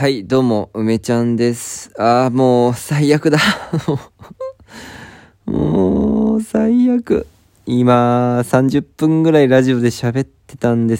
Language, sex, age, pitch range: Japanese, male, 20-39, 100-130 Hz